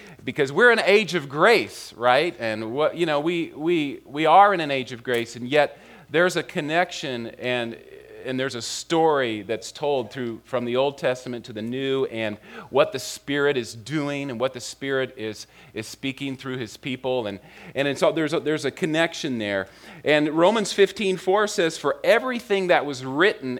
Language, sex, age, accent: English, male, 40-59, American